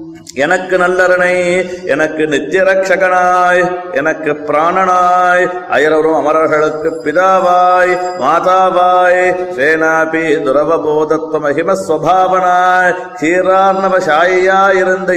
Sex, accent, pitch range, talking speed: male, native, 160-185 Hz, 45 wpm